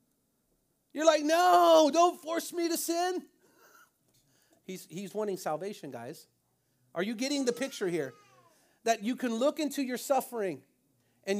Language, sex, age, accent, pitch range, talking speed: English, male, 40-59, American, 155-245 Hz, 140 wpm